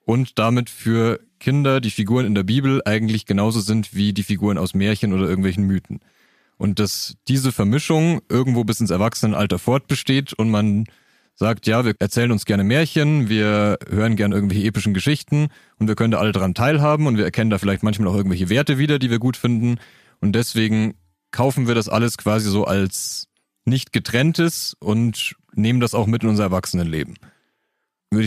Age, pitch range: 30-49, 105-125 Hz